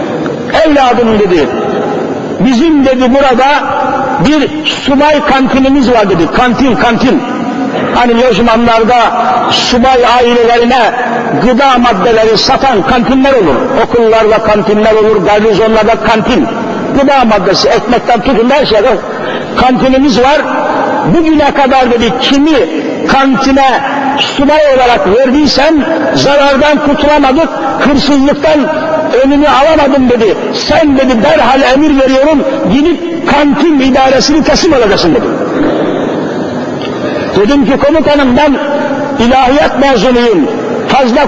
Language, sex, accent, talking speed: Turkish, male, native, 95 wpm